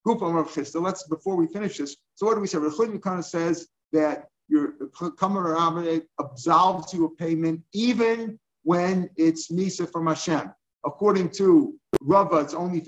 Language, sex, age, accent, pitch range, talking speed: English, male, 50-69, American, 145-180 Hz, 165 wpm